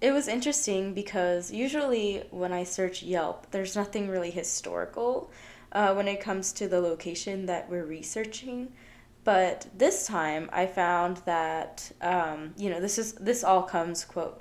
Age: 20-39